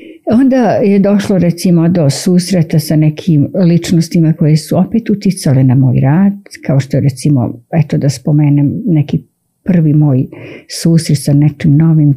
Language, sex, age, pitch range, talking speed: Croatian, female, 50-69, 140-190 Hz, 145 wpm